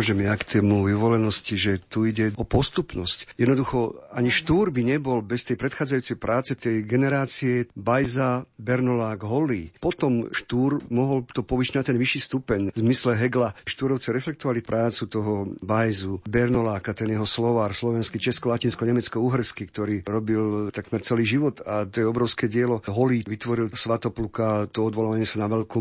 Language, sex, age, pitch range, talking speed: Slovak, male, 50-69, 110-125 Hz, 155 wpm